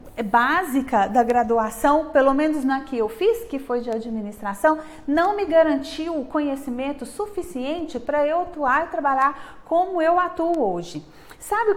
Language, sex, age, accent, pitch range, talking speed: Portuguese, female, 30-49, Brazilian, 240-315 Hz, 155 wpm